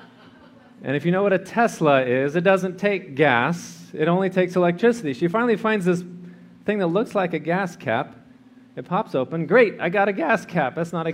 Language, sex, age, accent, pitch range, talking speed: English, male, 40-59, American, 160-205 Hz, 210 wpm